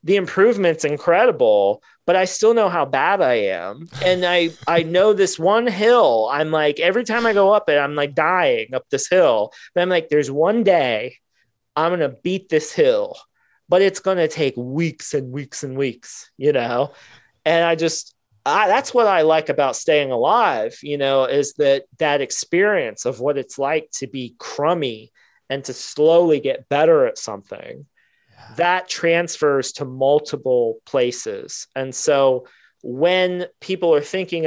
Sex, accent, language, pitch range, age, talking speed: male, American, English, 140-190 Hz, 30-49, 170 wpm